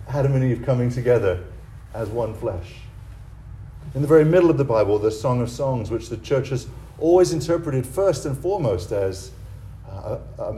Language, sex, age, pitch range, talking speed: English, male, 40-59, 105-150 Hz, 175 wpm